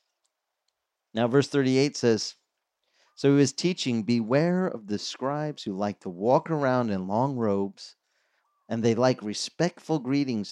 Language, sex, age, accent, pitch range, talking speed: English, male, 40-59, American, 105-150 Hz, 145 wpm